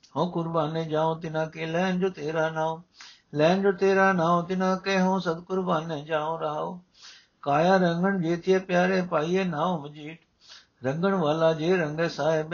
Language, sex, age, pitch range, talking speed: Punjabi, male, 60-79, 155-185 Hz, 170 wpm